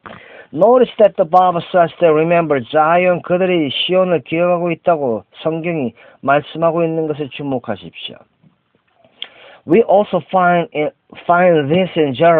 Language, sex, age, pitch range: Korean, male, 40-59, 125-165 Hz